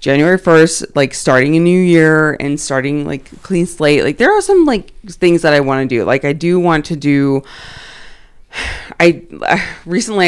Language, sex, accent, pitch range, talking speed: English, female, American, 135-170 Hz, 185 wpm